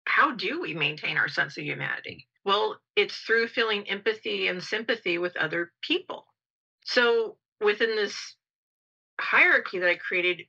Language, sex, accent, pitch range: English, female, American, 160-220 Hz